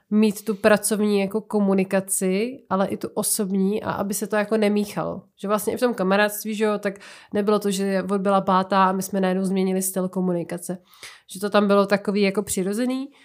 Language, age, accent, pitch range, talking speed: Czech, 20-39, native, 190-205 Hz, 190 wpm